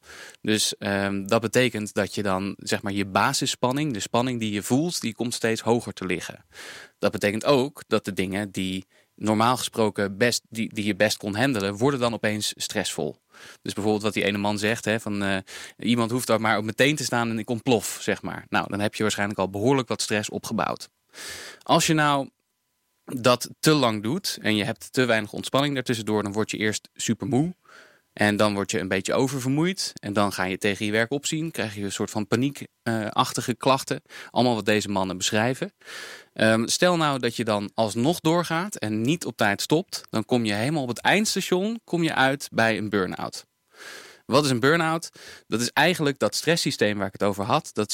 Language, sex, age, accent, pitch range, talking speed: English, male, 20-39, Dutch, 105-135 Hz, 205 wpm